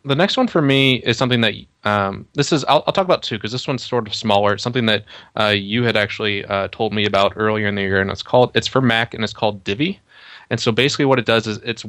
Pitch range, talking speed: 105-120 Hz, 285 wpm